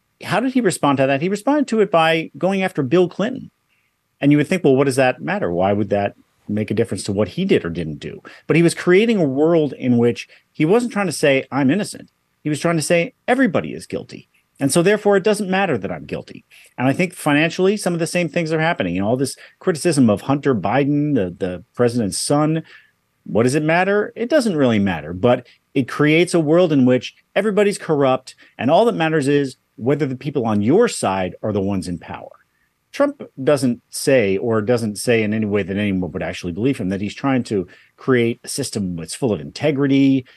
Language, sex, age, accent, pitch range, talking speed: English, male, 40-59, American, 110-170 Hz, 225 wpm